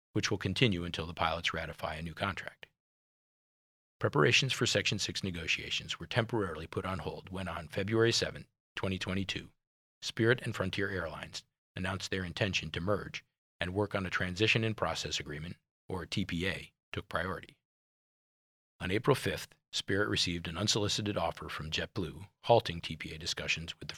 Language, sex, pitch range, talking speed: English, male, 80-105 Hz, 155 wpm